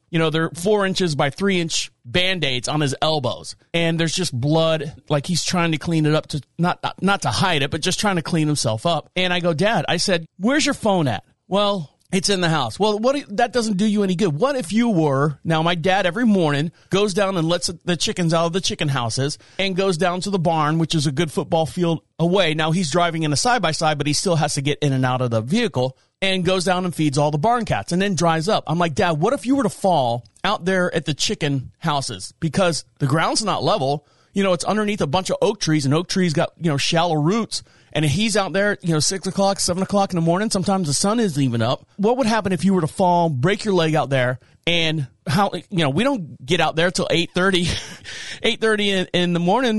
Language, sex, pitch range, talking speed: English, male, 150-195 Hz, 250 wpm